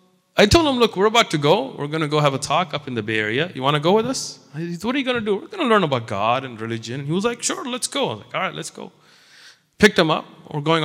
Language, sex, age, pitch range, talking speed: English, male, 30-49, 135-210 Hz, 330 wpm